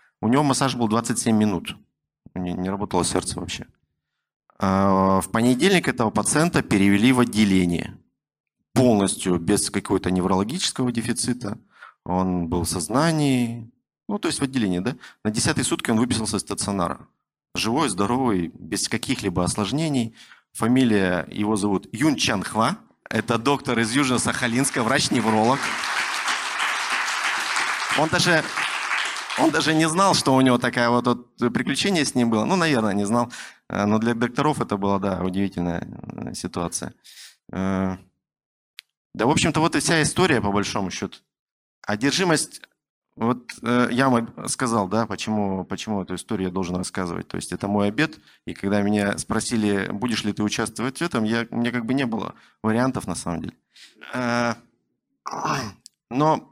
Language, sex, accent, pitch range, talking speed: Russian, male, native, 100-125 Hz, 140 wpm